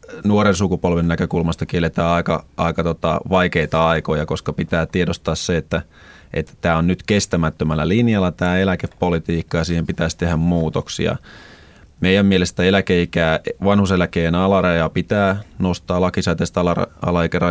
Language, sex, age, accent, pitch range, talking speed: Finnish, male, 30-49, native, 85-95 Hz, 125 wpm